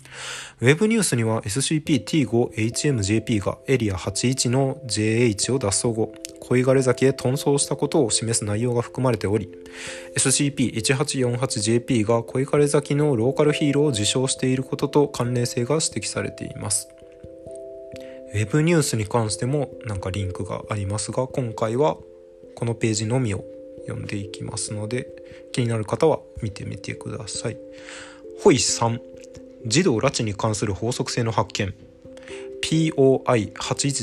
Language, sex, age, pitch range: Japanese, male, 20-39, 110-135 Hz